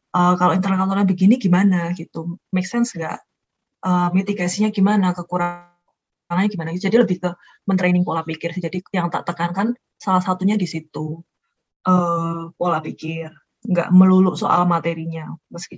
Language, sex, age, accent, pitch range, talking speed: Indonesian, female, 20-39, native, 170-210 Hz, 140 wpm